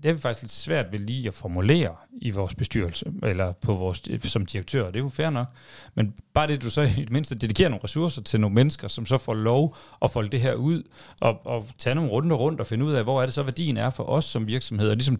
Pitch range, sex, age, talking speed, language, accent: 110-135 Hz, male, 40-59, 280 wpm, Danish, native